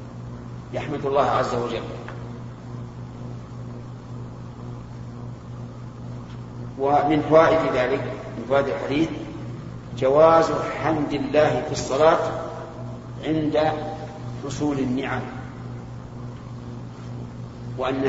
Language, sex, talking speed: Arabic, male, 60 wpm